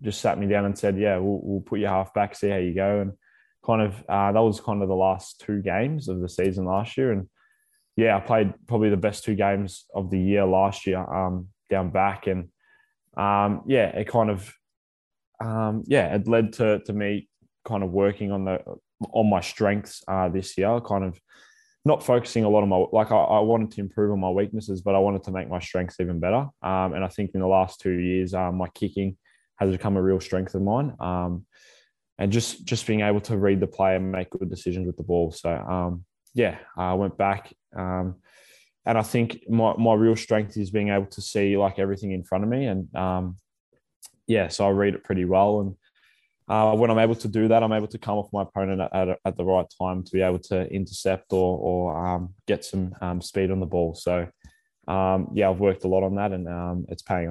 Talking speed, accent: 230 wpm, Australian